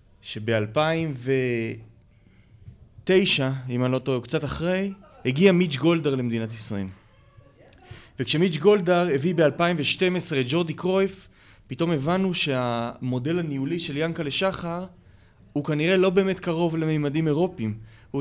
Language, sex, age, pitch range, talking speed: Hebrew, male, 30-49, 115-175 Hz, 115 wpm